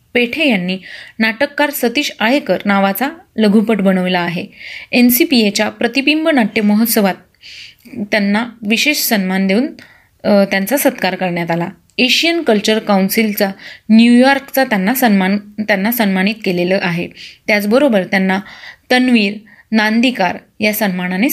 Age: 20-39